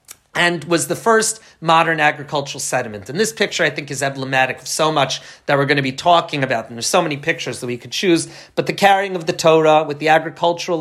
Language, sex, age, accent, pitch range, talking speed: English, male, 40-59, American, 135-185 Hz, 235 wpm